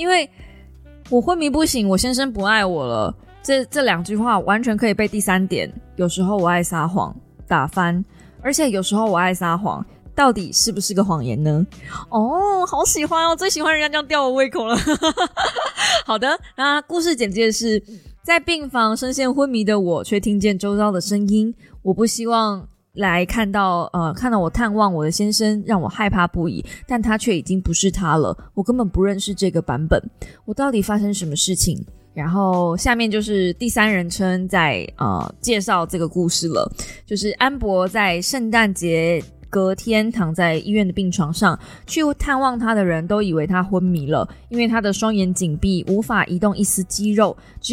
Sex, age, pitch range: female, 20-39, 180-230 Hz